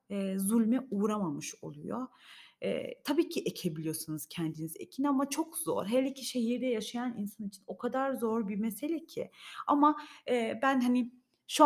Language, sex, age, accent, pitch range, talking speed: Turkish, female, 30-49, native, 190-245 Hz, 155 wpm